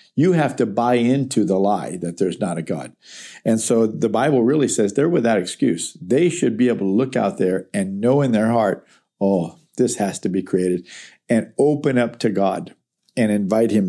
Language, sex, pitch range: English, male, 110-140 Hz